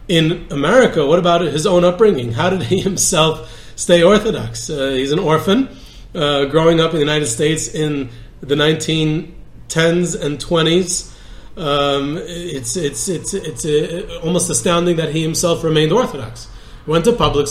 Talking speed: 160 wpm